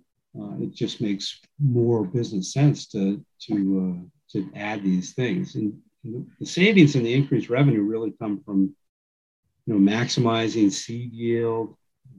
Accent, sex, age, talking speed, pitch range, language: American, male, 50-69, 145 wpm, 100-125 Hz, English